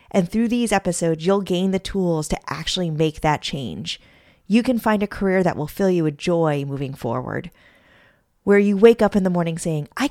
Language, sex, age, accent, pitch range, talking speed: English, female, 30-49, American, 165-225 Hz, 210 wpm